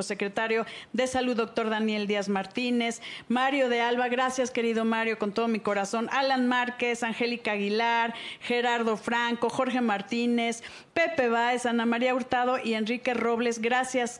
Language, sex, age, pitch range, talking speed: Spanish, female, 40-59, 195-235 Hz, 145 wpm